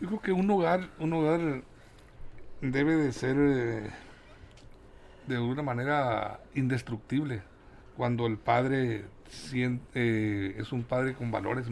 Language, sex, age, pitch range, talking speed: Spanish, male, 60-79, 120-145 Hz, 130 wpm